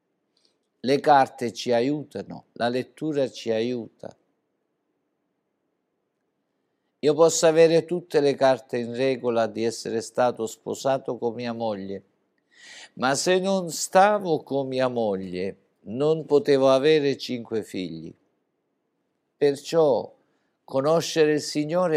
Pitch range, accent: 110-150 Hz, native